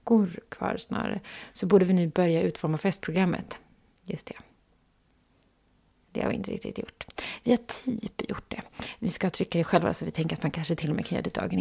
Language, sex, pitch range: English, female, 180-220 Hz